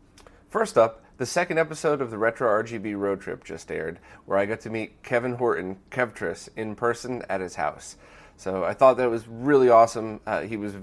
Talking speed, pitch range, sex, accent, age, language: 200 wpm, 95-115 Hz, male, American, 30-49, English